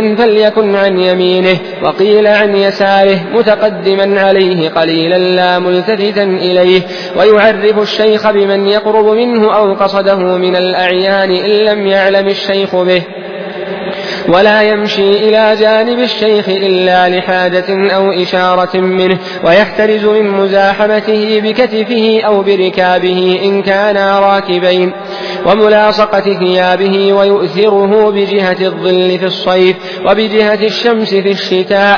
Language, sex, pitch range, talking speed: Arabic, male, 185-210 Hz, 105 wpm